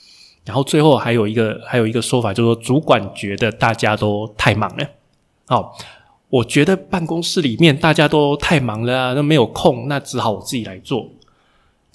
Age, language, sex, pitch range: 20-39, Chinese, male, 110-145 Hz